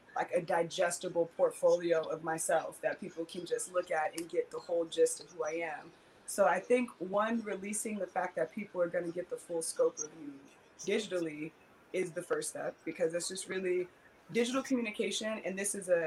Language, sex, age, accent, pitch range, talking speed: English, female, 20-39, American, 165-210 Hz, 200 wpm